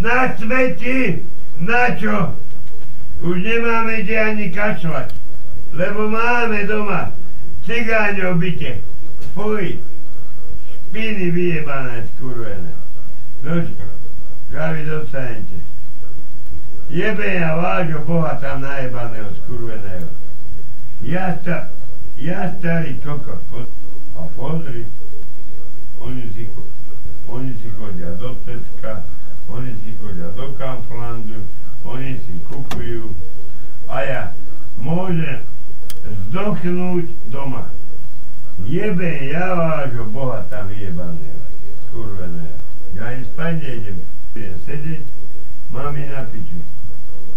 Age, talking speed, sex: 60-79, 85 wpm, male